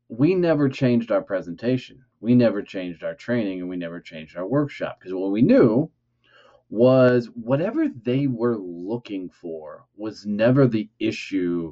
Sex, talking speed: male, 155 wpm